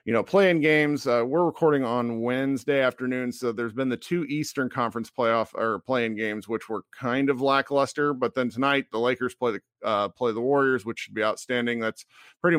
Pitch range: 125-160 Hz